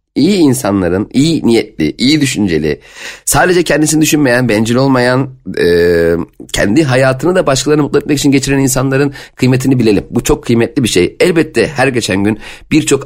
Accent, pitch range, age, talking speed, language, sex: native, 100-140 Hz, 40-59, 150 wpm, Turkish, male